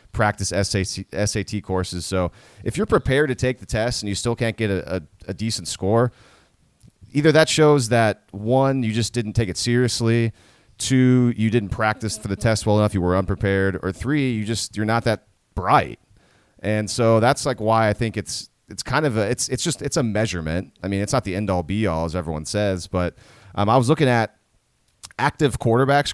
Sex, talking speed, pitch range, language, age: male, 205 wpm, 95-120 Hz, English, 30-49